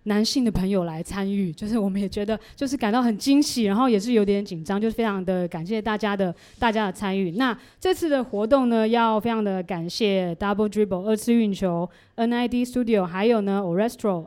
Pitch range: 190-230 Hz